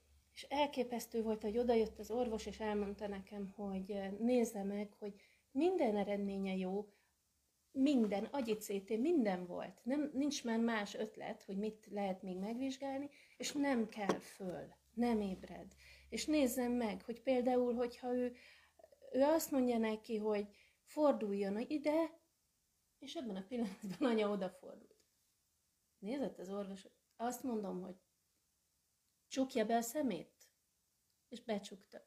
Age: 30-49